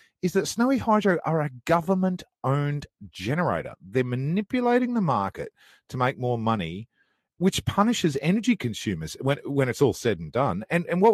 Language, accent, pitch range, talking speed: English, Australian, 110-160 Hz, 160 wpm